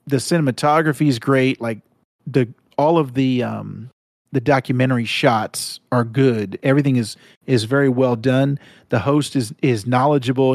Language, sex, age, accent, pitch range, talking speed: English, male, 40-59, American, 130-180 Hz, 150 wpm